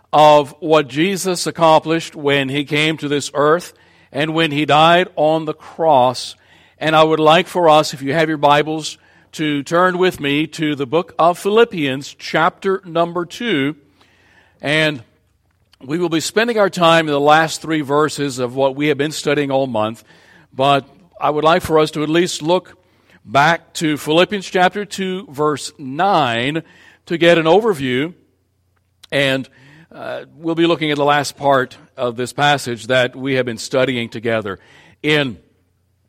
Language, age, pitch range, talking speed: English, 60-79, 130-170 Hz, 165 wpm